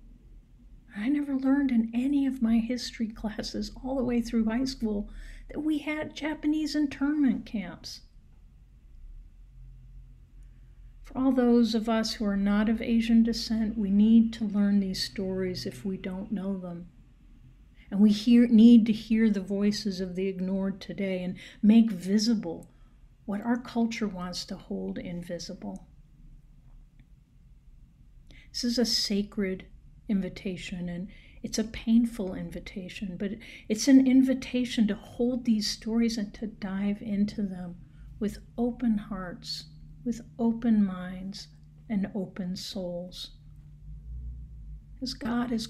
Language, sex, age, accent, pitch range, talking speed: English, female, 50-69, American, 190-230 Hz, 130 wpm